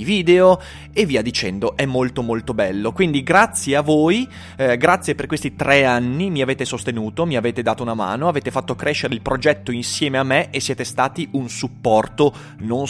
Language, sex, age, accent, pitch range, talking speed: Italian, male, 30-49, native, 120-175 Hz, 185 wpm